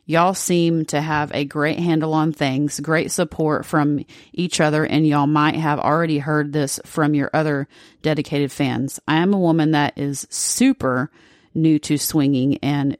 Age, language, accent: 30-49, English, American